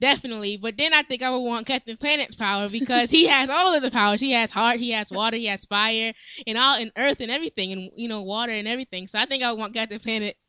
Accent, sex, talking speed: American, female, 270 wpm